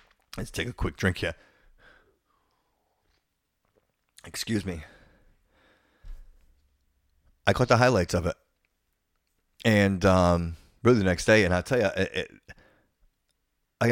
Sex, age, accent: male, 30-49, American